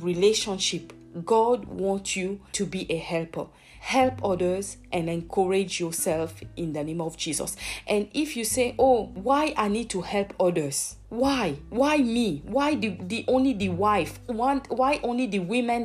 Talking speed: 165 wpm